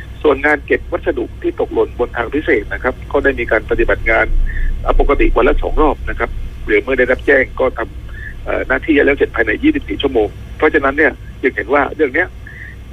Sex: male